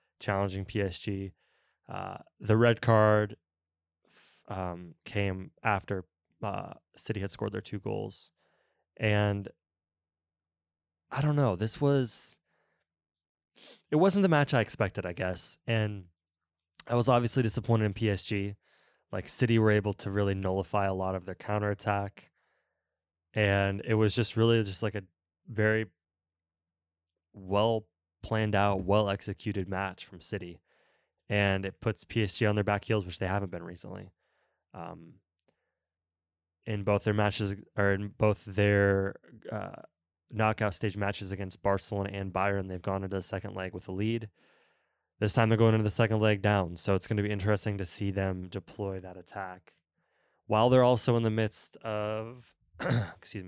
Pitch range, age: 90-110 Hz, 20-39